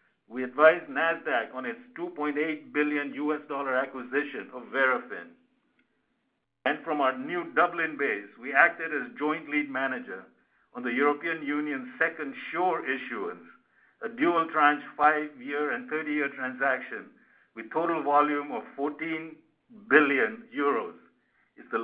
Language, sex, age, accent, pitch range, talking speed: English, male, 50-69, Indian, 135-165 Hz, 130 wpm